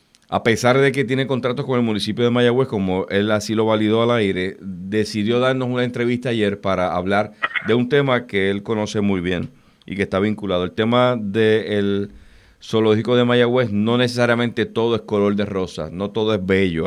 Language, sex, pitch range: Spanish, male, 100-120 Hz